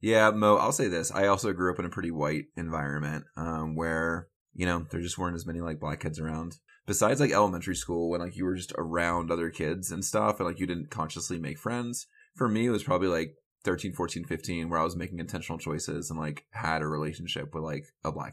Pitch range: 80-95 Hz